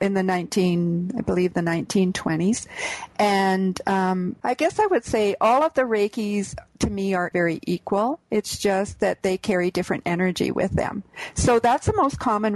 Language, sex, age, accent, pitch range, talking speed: English, female, 40-59, American, 190-230 Hz, 175 wpm